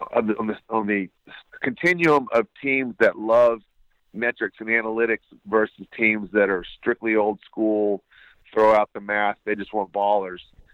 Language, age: English, 40-59